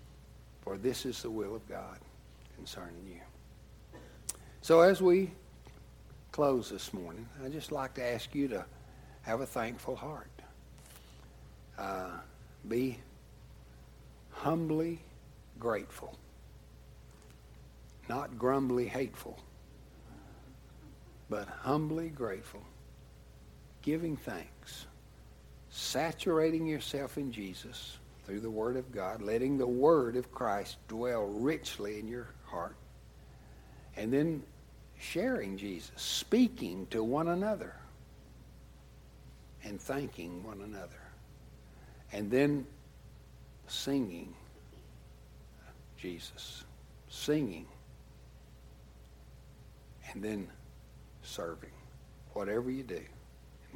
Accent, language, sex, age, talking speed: American, English, male, 60-79, 90 wpm